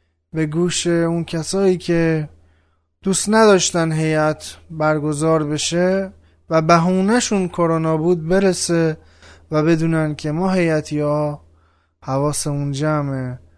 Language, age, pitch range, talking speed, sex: Persian, 20-39, 135-170 Hz, 105 wpm, male